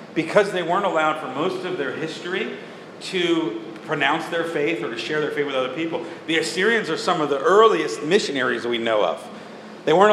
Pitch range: 145-195 Hz